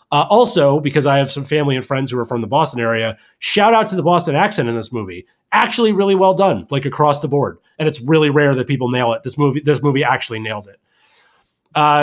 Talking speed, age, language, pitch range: 240 wpm, 30-49, English, 130-165 Hz